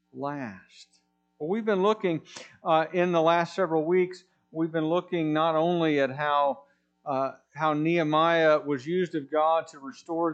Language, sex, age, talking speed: English, male, 50-69, 145 wpm